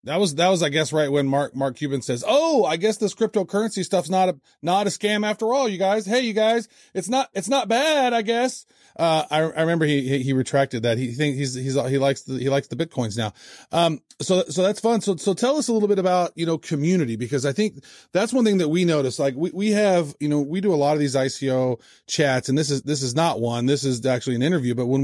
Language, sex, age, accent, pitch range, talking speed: English, male, 30-49, American, 135-175 Hz, 265 wpm